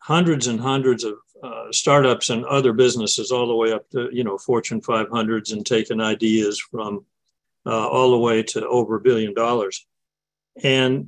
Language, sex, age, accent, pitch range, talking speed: English, male, 50-69, American, 120-145 Hz, 175 wpm